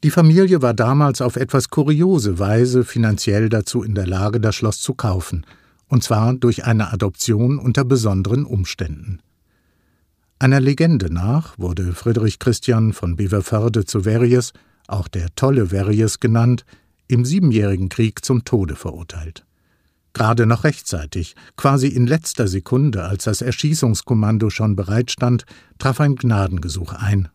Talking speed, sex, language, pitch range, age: 135 wpm, male, German, 95-125 Hz, 50-69